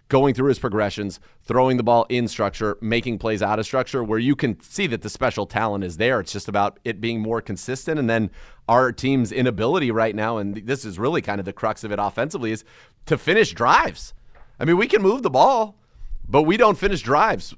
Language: English